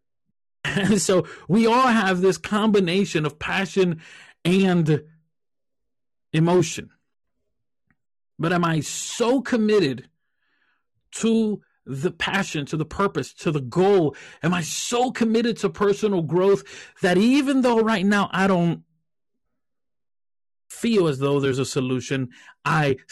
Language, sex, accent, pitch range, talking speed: English, male, American, 130-170 Hz, 115 wpm